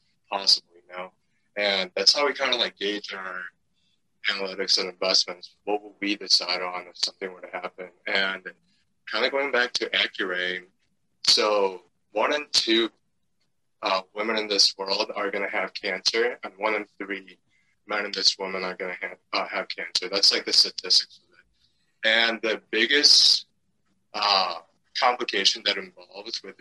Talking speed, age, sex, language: 160 wpm, 20-39, male, English